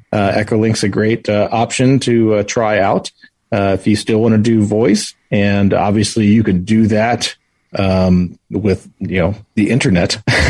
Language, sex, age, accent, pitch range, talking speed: English, male, 30-49, American, 100-120 Hz, 170 wpm